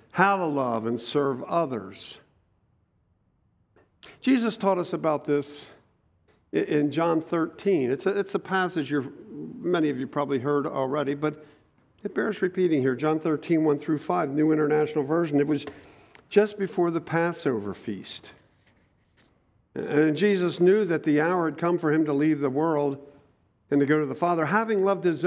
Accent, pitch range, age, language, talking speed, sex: American, 140-180 Hz, 50-69, English, 165 wpm, male